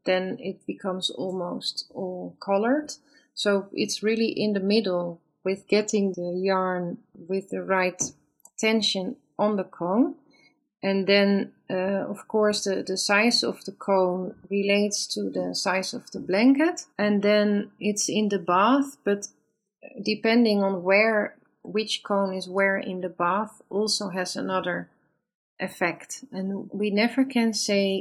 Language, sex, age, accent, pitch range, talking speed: English, female, 30-49, Dutch, 185-215 Hz, 145 wpm